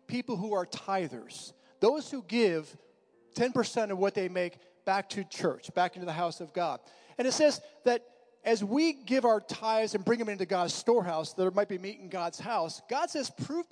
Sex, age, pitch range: male, 40-59, 195-260 Hz